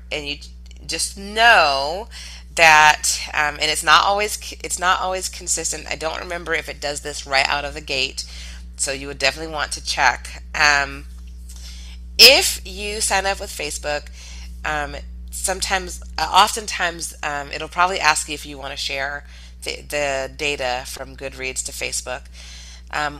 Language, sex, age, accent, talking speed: English, female, 20-39, American, 155 wpm